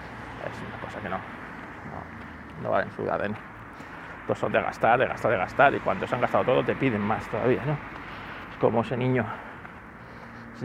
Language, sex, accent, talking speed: Spanish, male, Spanish, 190 wpm